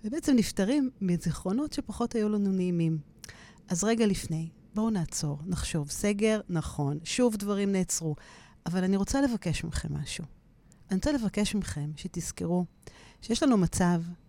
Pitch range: 170-220 Hz